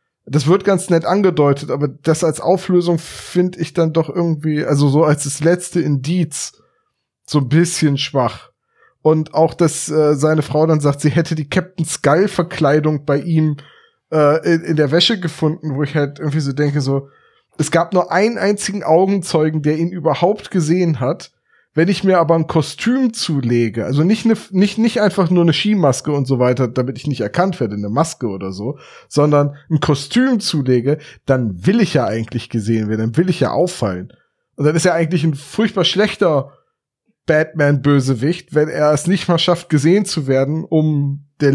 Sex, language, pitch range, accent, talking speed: male, German, 145-180 Hz, German, 180 wpm